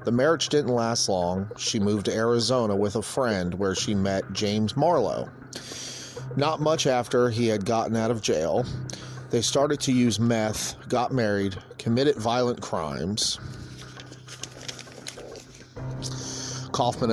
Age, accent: 30-49, American